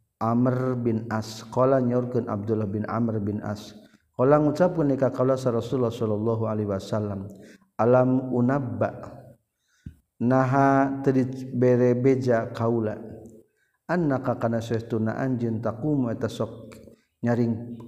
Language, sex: Indonesian, male